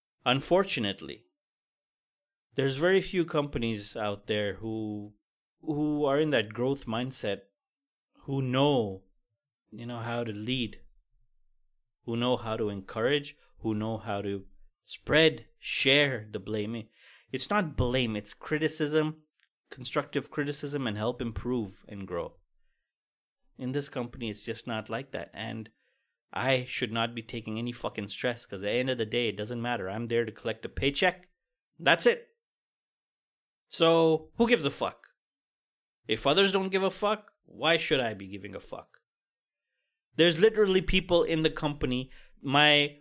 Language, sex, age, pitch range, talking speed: English, male, 30-49, 115-165 Hz, 150 wpm